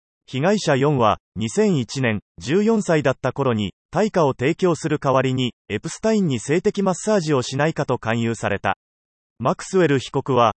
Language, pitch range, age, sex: Japanese, 120-185 Hz, 30-49, male